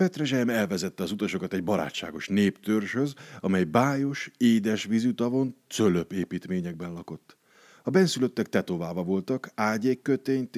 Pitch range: 90-135 Hz